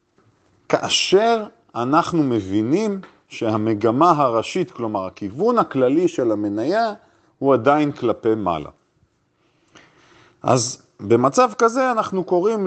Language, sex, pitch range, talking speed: Hebrew, male, 125-195 Hz, 90 wpm